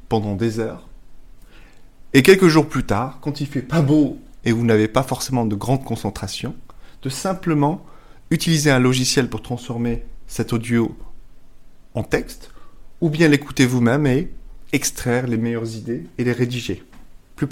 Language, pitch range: French, 115-145 Hz